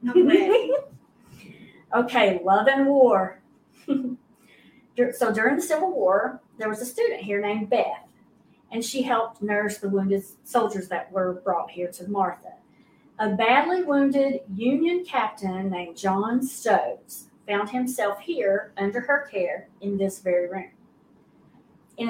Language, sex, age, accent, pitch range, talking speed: English, female, 40-59, American, 195-255 Hz, 130 wpm